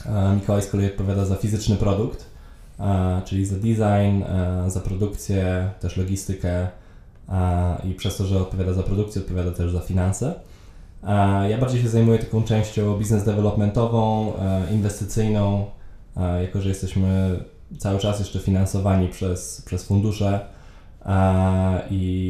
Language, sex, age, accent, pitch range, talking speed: English, male, 20-39, Polish, 95-105 Hz, 120 wpm